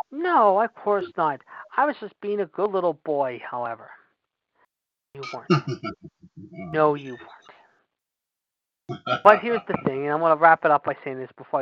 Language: English